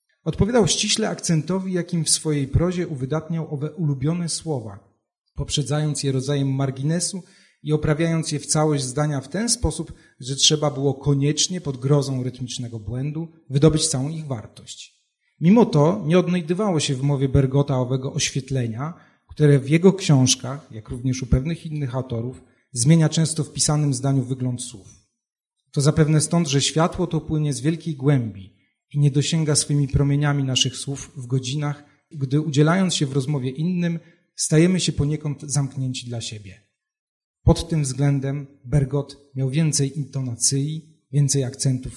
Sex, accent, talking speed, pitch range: male, native, 145 wpm, 130-155 Hz